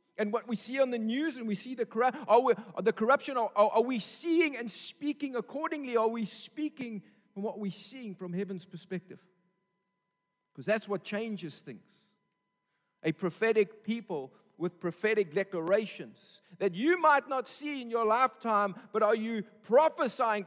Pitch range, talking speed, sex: 155-215 Hz, 155 wpm, male